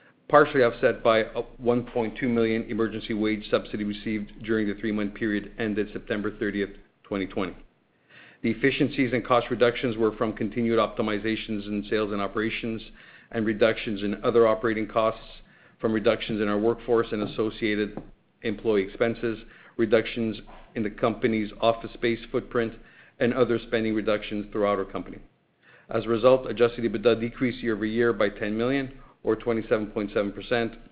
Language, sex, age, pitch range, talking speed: English, male, 50-69, 105-115 Hz, 140 wpm